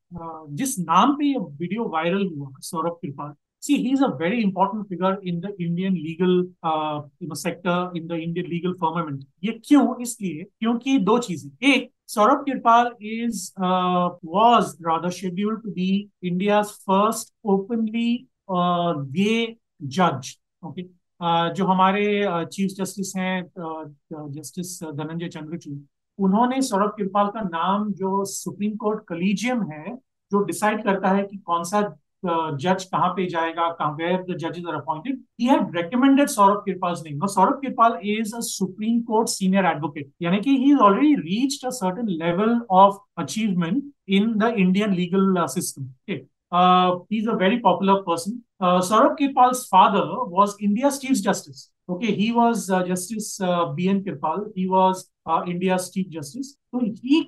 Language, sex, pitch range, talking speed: Hindi, male, 170-220 Hz, 125 wpm